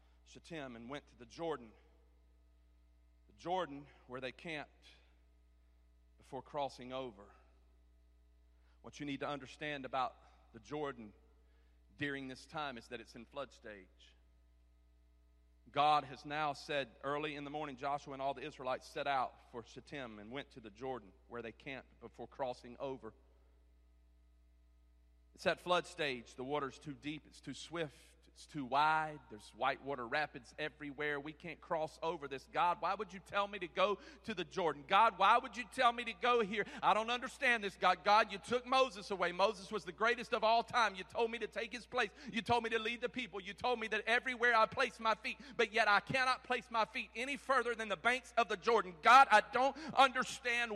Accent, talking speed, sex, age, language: American, 190 wpm, male, 40-59, English